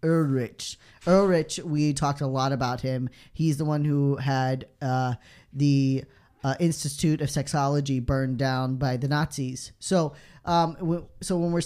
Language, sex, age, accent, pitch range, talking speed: English, male, 10-29, American, 135-165 Hz, 155 wpm